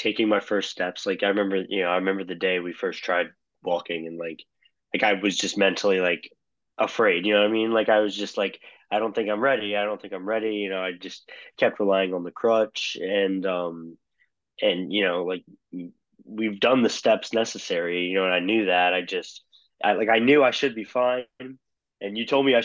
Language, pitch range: English, 90-110 Hz